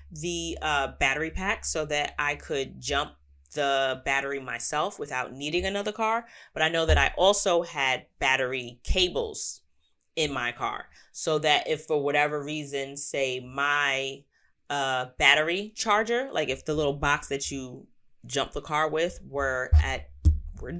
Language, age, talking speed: English, 20-39, 155 wpm